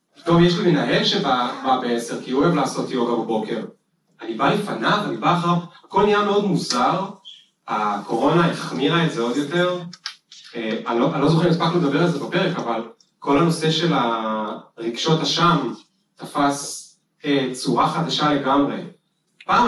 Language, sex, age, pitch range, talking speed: Hebrew, male, 30-49, 140-175 Hz, 150 wpm